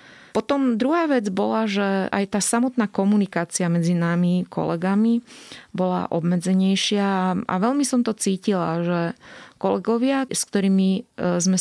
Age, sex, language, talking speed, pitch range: 30-49, female, Slovak, 125 wpm, 175-210 Hz